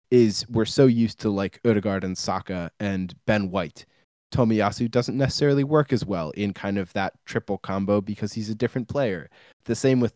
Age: 20-39